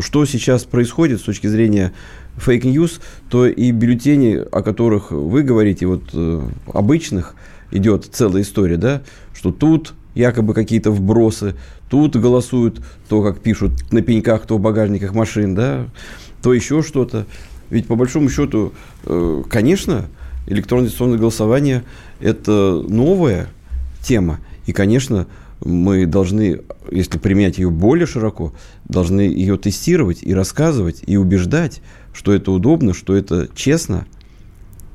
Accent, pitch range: native, 90-115 Hz